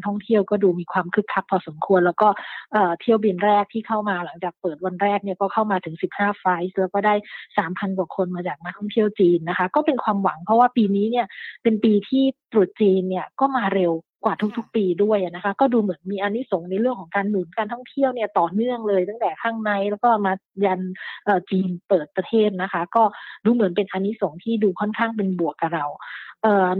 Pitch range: 185-220 Hz